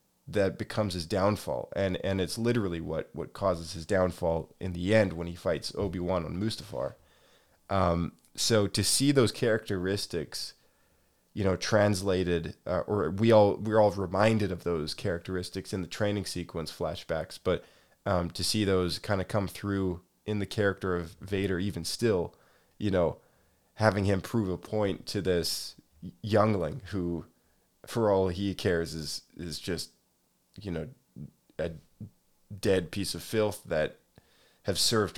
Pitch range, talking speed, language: 85-105 Hz, 155 wpm, English